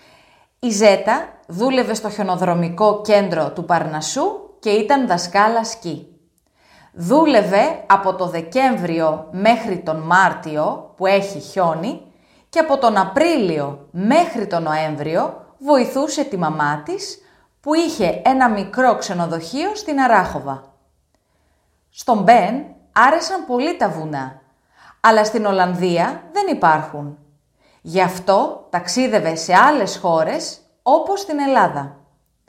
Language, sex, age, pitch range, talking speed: Greek, female, 30-49, 165-265 Hz, 110 wpm